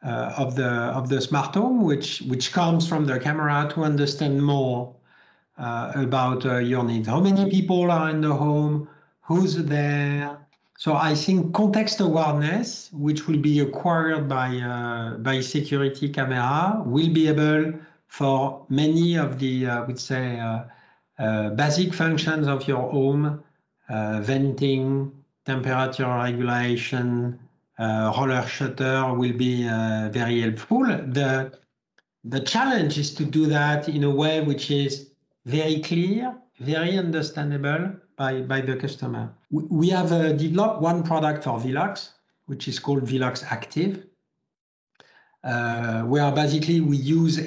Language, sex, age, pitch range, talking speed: Dutch, male, 50-69, 130-160 Hz, 145 wpm